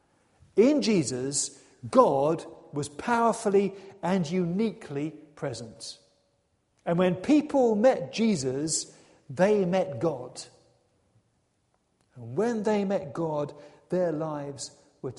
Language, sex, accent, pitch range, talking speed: English, male, British, 140-215 Hz, 95 wpm